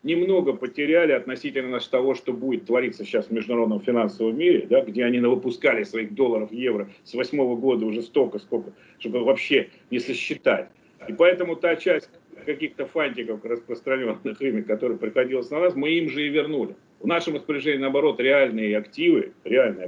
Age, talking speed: 40-59, 160 wpm